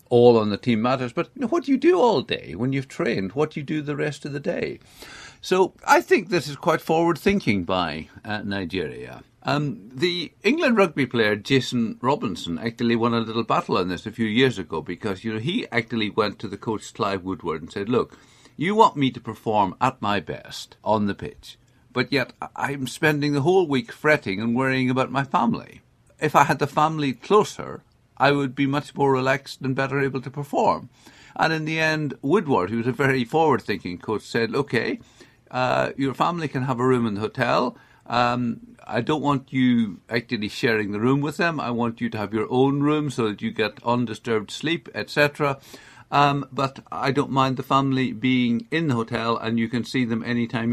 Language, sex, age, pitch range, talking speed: English, male, 50-69, 115-145 Hz, 205 wpm